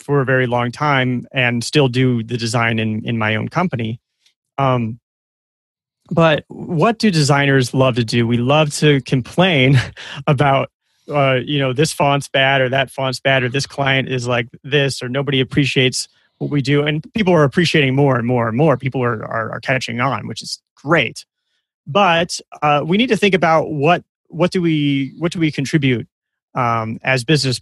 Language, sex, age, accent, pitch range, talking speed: English, male, 30-49, American, 125-155 Hz, 185 wpm